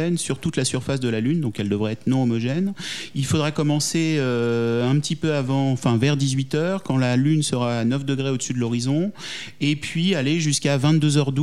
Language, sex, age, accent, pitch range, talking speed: French, male, 40-59, French, 120-145 Hz, 205 wpm